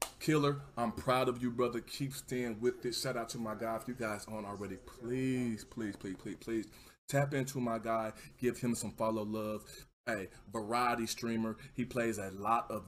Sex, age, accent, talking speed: male, 20-39, American, 205 wpm